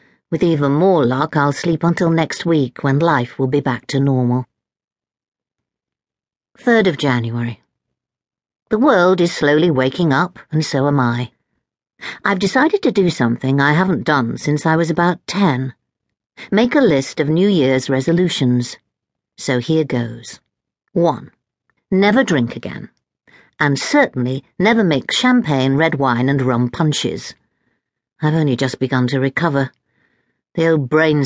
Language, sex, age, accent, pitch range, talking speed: English, female, 50-69, British, 135-175 Hz, 145 wpm